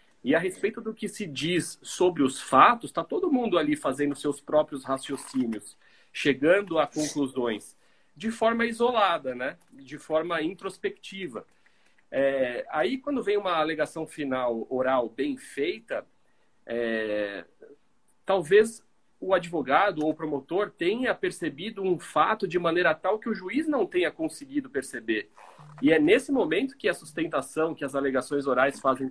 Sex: male